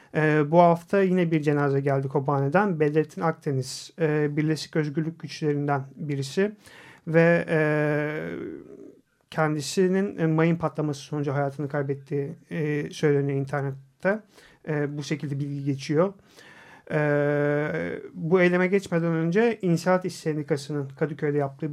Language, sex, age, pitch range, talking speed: Turkish, male, 40-59, 150-175 Hz, 115 wpm